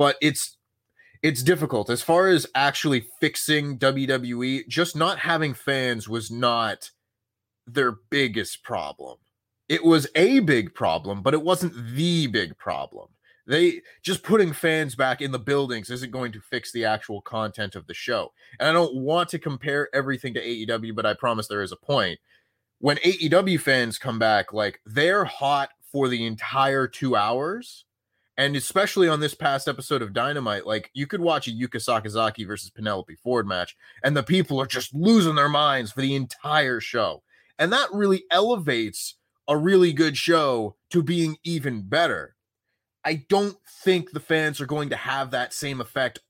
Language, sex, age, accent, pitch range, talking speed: English, male, 20-39, American, 115-165 Hz, 170 wpm